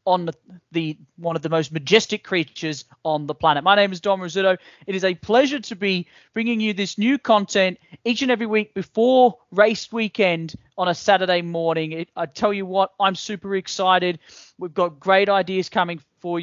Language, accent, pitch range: English, Australian, 160-205 Hz